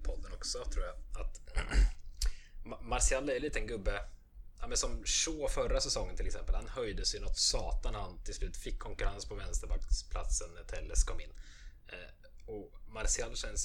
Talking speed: 165 wpm